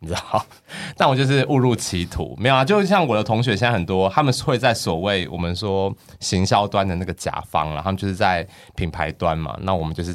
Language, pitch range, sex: Chinese, 85-110 Hz, male